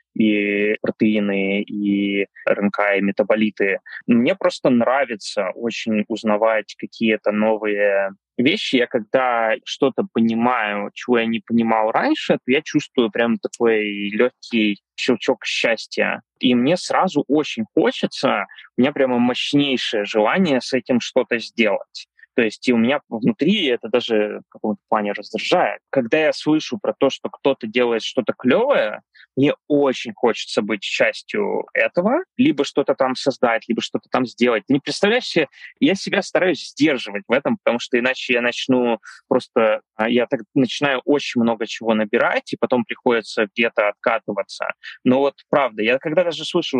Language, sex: Russian, male